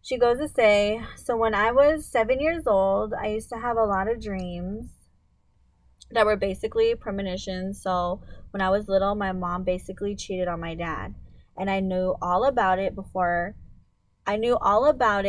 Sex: female